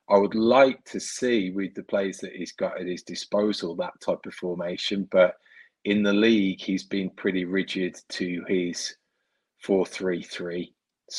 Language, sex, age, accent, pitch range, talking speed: English, male, 20-39, British, 90-100 Hz, 155 wpm